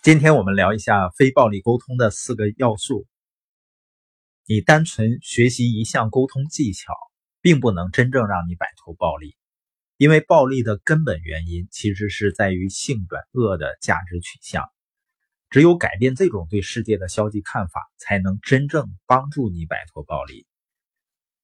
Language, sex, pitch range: Chinese, male, 95-140 Hz